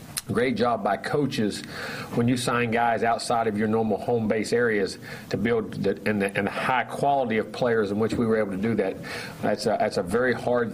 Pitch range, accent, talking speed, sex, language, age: 105-115 Hz, American, 230 wpm, male, English, 40-59